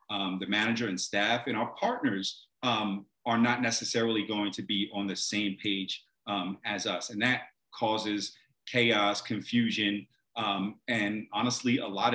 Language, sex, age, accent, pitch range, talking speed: English, male, 40-59, American, 100-120 Hz, 160 wpm